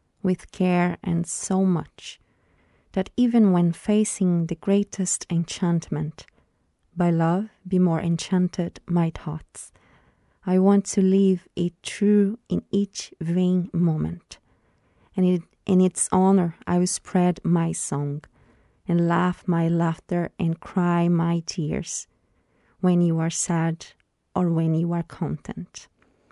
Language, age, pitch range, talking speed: Portuguese, 30-49, 165-190 Hz, 125 wpm